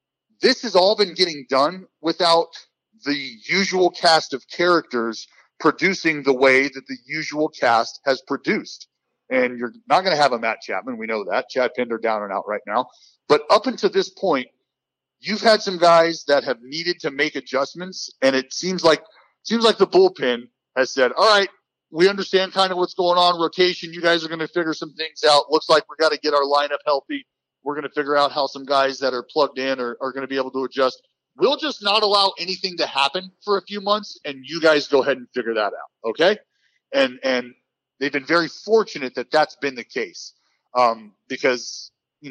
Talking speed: 210 wpm